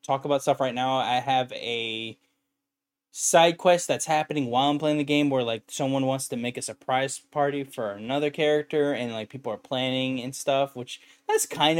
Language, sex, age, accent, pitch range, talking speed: English, male, 10-29, American, 125-155 Hz, 200 wpm